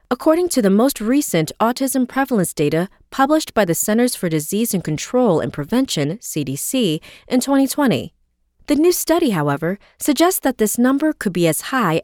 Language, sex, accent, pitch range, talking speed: English, female, American, 160-260 Hz, 165 wpm